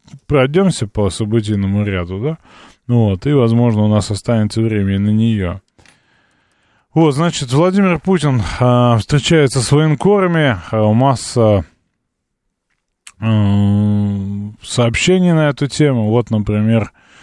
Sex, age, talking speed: male, 20-39, 110 wpm